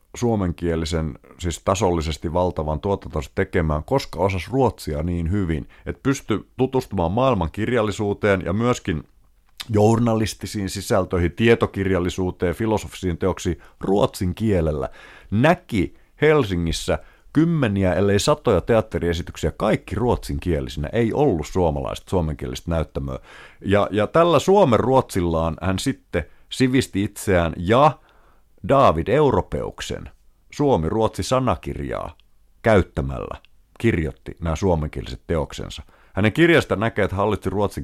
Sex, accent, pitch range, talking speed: male, native, 80-110 Hz, 100 wpm